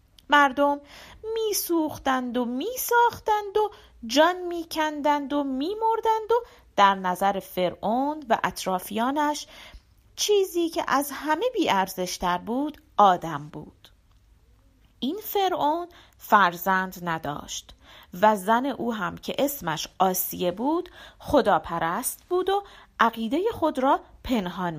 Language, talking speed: Persian, 105 wpm